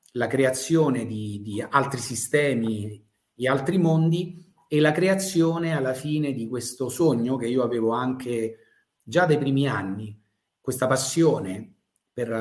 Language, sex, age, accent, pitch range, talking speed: Italian, male, 40-59, native, 115-145 Hz, 135 wpm